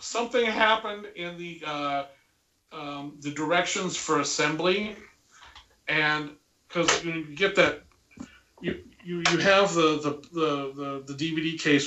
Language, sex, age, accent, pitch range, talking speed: English, male, 40-59, American, 150-200 Hz, 125 wpm